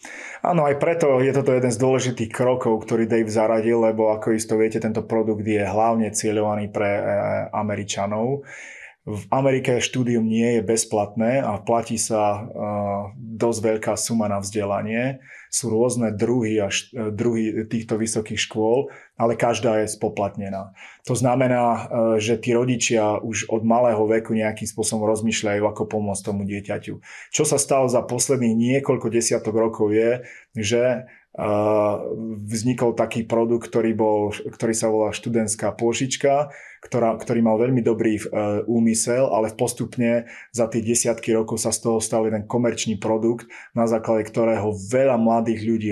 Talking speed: 145 wpm